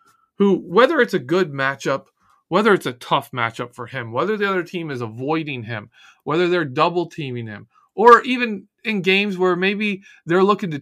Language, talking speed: English, 185 wpm